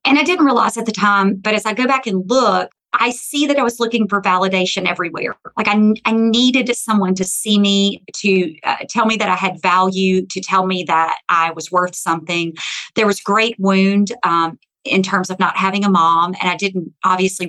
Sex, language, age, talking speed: female, English, 40-59, 215 wpm